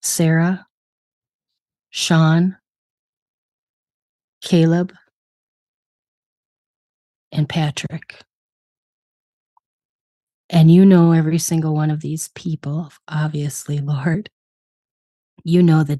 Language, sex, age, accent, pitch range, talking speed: English, female, 30-49, American, 145-165 Hz, 70 wpm